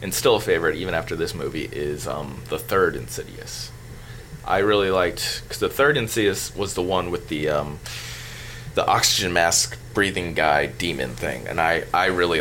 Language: English